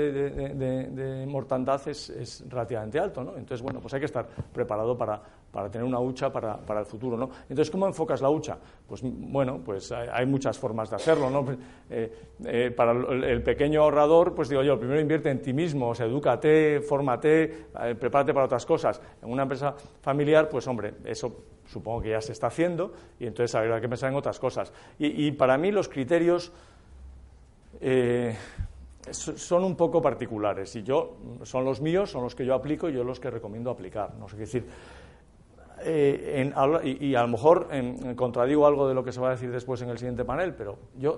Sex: male